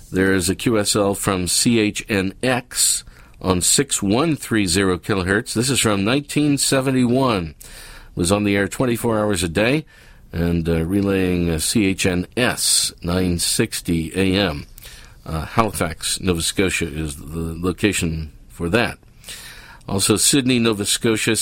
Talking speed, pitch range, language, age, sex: 120 wpm, 90-115 Hz, English, 50-69, male